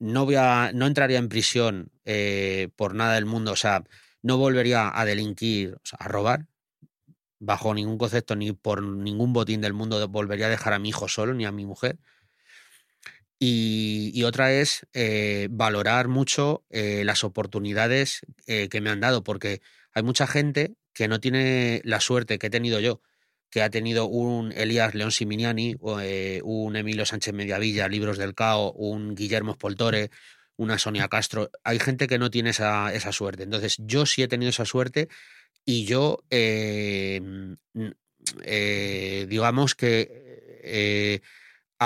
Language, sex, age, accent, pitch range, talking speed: Spanish, male, 30-49, Spanish, 105-125 Hz, 160 wpm